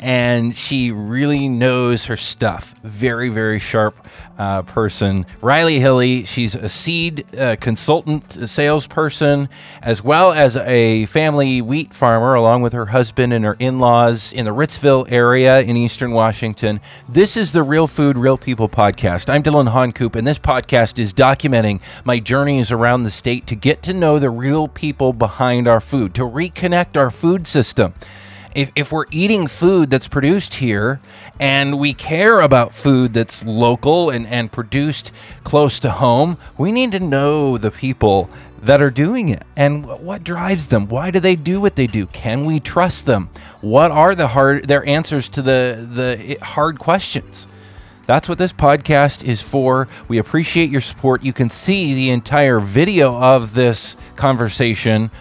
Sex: male